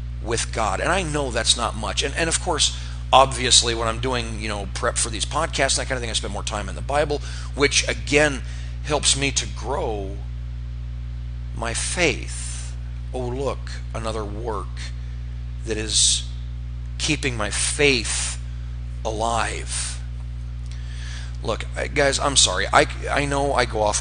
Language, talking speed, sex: English, 150 wpm, male